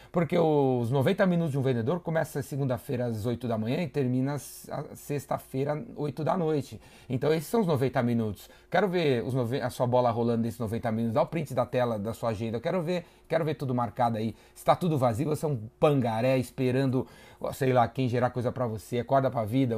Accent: Brazilian